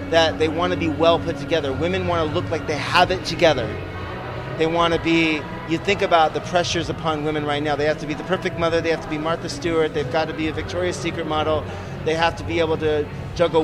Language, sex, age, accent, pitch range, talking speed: English, male, 30-49, American, 140-170 Hz, 255 wpm